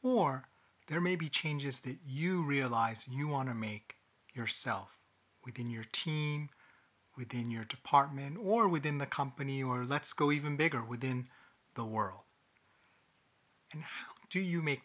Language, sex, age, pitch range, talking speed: English, male, 30-49, 120-150 Hz, 145 wpm